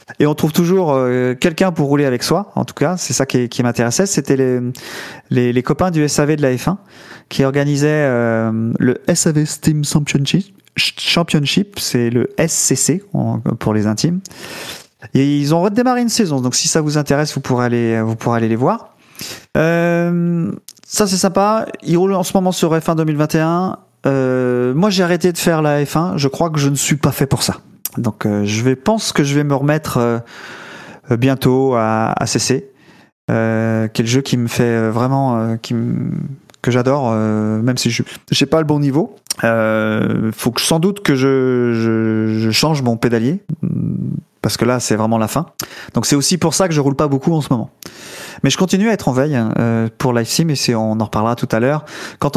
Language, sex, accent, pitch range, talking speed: French, male, French, 120-165 Hz, 205 wpm